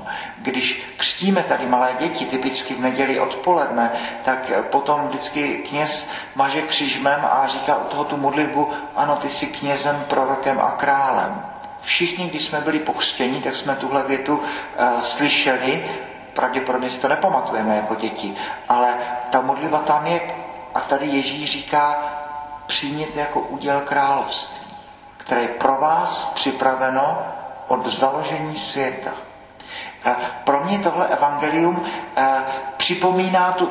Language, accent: Czech, native